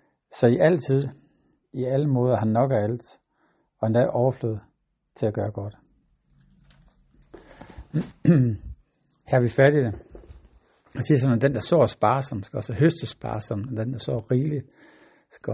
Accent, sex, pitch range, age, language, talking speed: native, male, 115-135 Hz, 60-79, Danish, 155 wpm